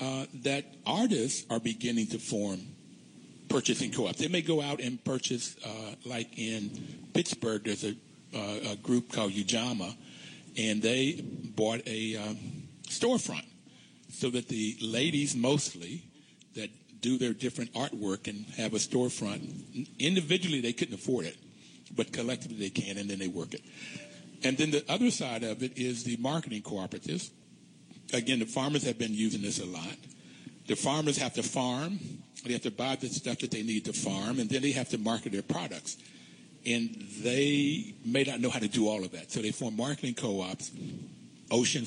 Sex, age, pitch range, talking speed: male, 60-79, 110-130 Hz, 175 wpm